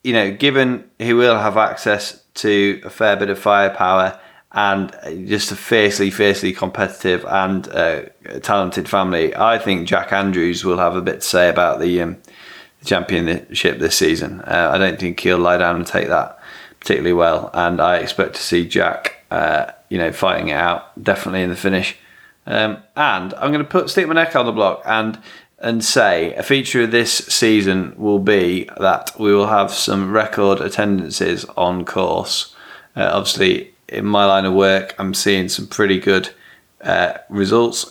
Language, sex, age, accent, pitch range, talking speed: English, male, 20-39, British, 95-105 Hz, 175 wpm